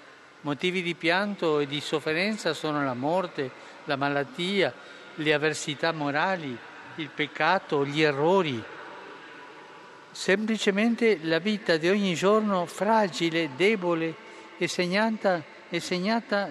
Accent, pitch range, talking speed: native, 150-205 Hz, 100 wpm